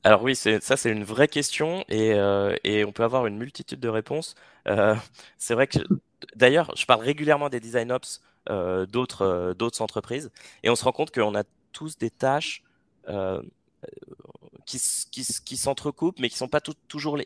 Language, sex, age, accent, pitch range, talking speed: French, male, 20-39, French, 110-135 Hz, 195 wpm